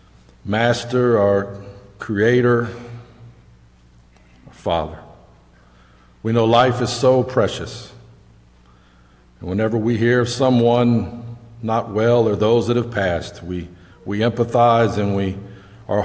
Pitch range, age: 85-120 Hz, 50-69